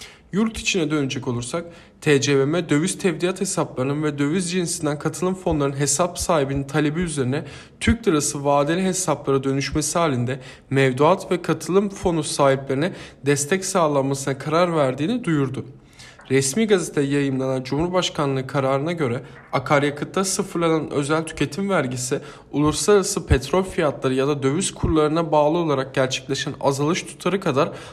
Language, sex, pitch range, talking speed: Turkish, male, 140-180 Hz, 120 wpm